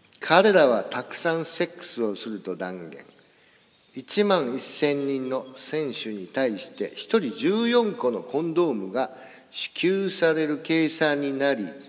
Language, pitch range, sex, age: Japanese, 120-175 Hz, male, 50-69